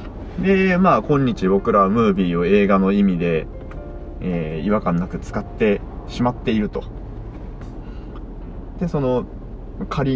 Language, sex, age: Japanese, male, 20-39